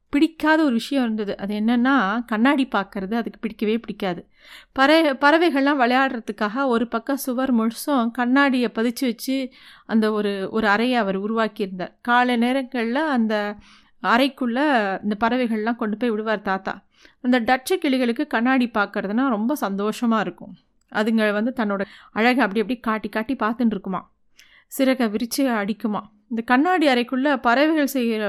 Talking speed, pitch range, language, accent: 130 wpm, 225-280 Hz, Tamil, native